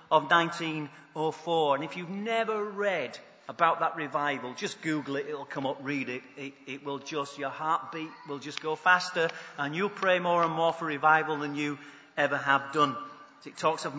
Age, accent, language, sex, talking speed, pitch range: 40-59, British, English, male, 190 wpm, 155-200 Hz